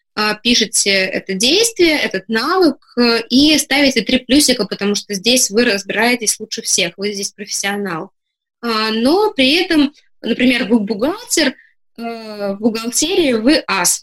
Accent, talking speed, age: native, 125 wpm, 20-39